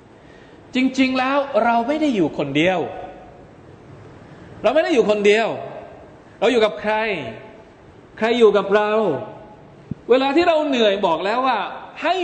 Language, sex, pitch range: Thai, male, 160-260 Hz